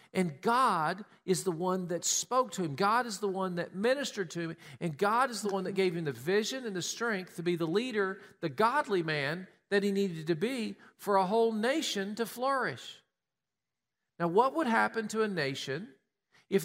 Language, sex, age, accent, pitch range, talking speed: English, male, 50-69, American, 185-230 Hz, 200 wpm